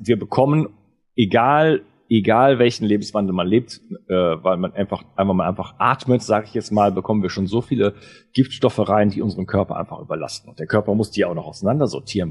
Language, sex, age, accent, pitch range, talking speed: German, male, 30-49, German, 100-120 Hz, 200 wpm